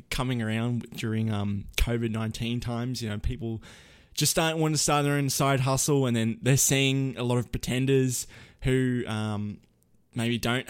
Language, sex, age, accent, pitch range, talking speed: English, male, 20-39, Australian, 115-135 Hz, 175 wpm